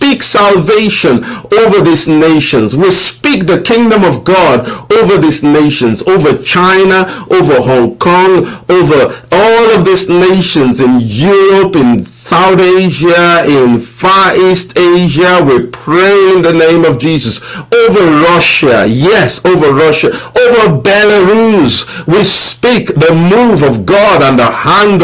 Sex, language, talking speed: male, English, 130 wpm